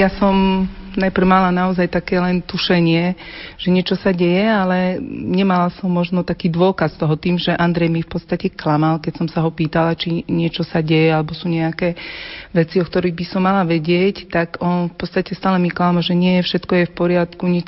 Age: 40-59